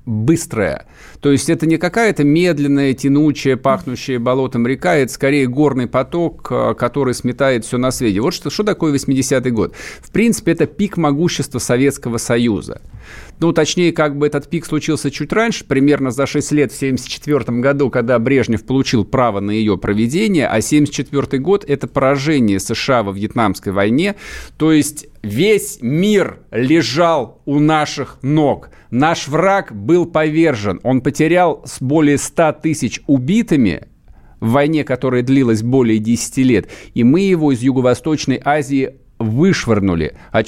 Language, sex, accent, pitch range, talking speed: Russian, male, native, 120-150 Hz, 145 wpm